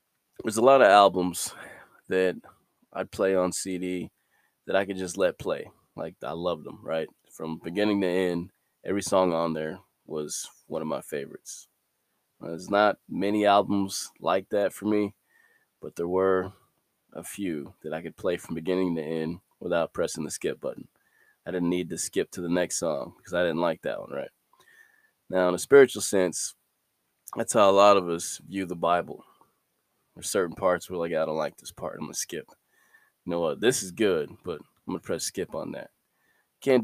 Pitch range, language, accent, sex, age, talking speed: 90-100 Hz, English, American, male, 20-39, 195 wpm